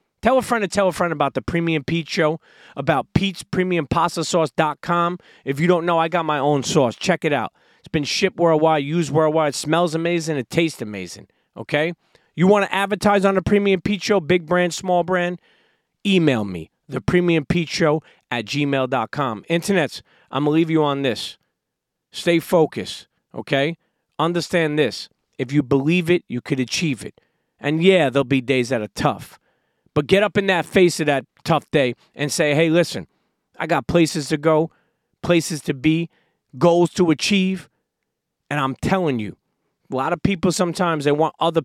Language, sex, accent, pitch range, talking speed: English, male, American, 140-175 Hz, 180 wpm